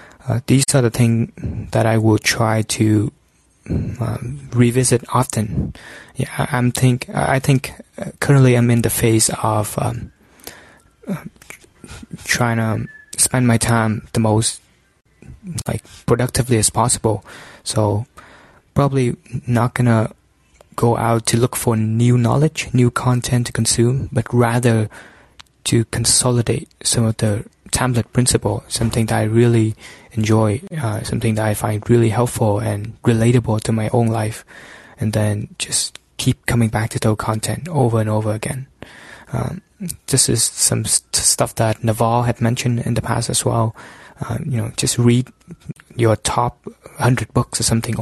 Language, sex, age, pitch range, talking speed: English, male, 20-39, 110-125 Hz, 150 wpm